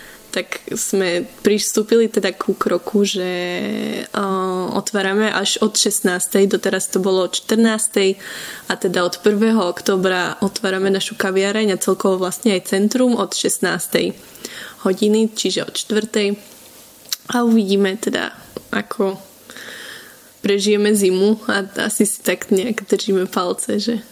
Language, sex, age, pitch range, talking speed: Slovak, female, 10-29, 190-215 Hz, 125 wpm